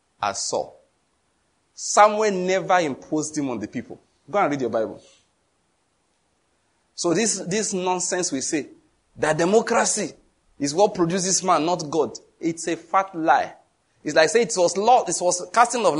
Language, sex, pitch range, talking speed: English, male, 155-220 Hz, 160 wpm